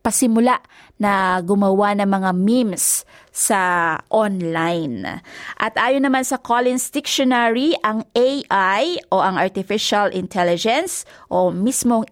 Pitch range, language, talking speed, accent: 185-235 Hz, Filipino, 105 wpm, native